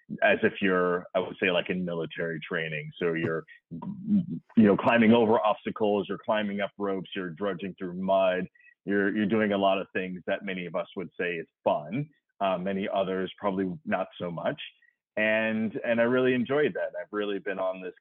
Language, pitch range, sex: English, 90-120 Hz, male